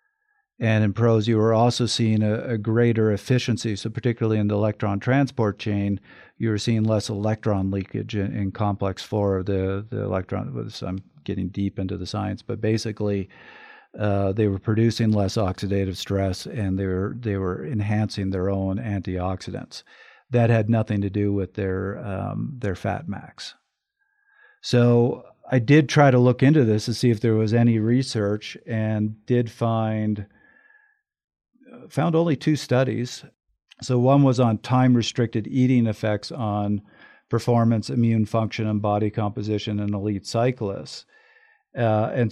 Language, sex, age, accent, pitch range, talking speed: English, male, 50-69, American, 105-120 Hz, 155 wpm